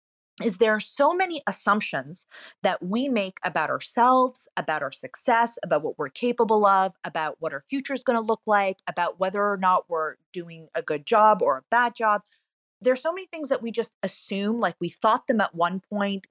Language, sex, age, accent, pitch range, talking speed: English, female, 30-49, American, 165-215 Hz, 210 wpm